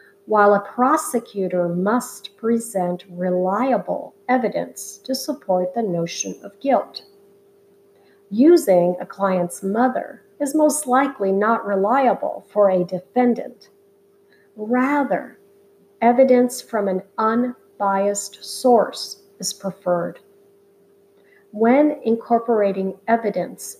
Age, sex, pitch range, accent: 50-69, female, 200-235 Hz, American